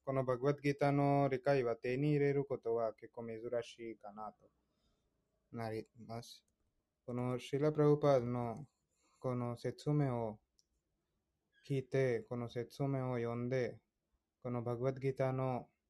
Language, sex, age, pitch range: Japanese, male, 20-39, 100-125 Hz